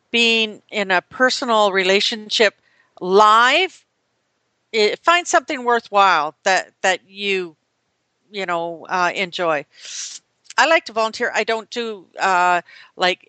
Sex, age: female, 50-69